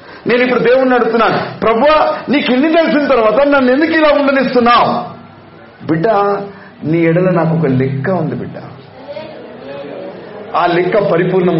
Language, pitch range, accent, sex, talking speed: Telugu, 130-220 Hz, native, male, 120 wpm